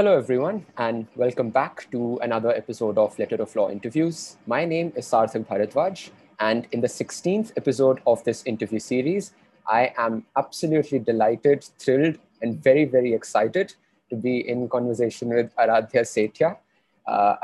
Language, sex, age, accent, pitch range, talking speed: English, male, 20-39, Indian, 115-130 Hz, 150 wpm